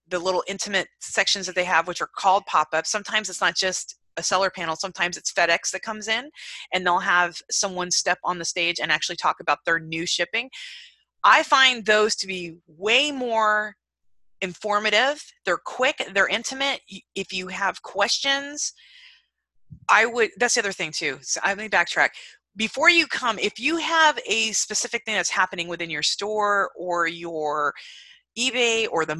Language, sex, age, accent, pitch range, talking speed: English, female, 20-39, American, 170-225 Hz, 175 wpm